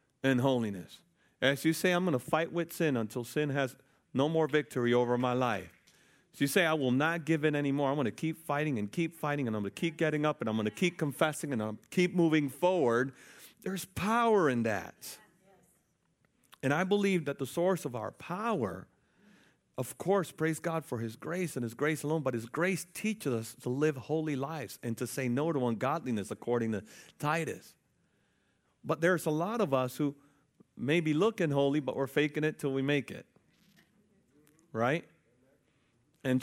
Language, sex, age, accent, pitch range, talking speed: English, male, 40-59, American, 125-165 Hz, 200 wpm